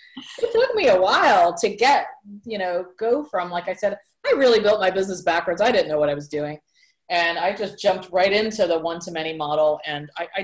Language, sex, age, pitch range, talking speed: English, female, 30-49, 160-215 Hz, 225 wpm